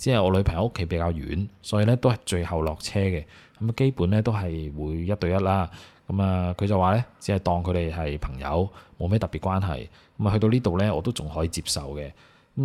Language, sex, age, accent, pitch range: Chinese, male, 20-39, native, 85-105 Hz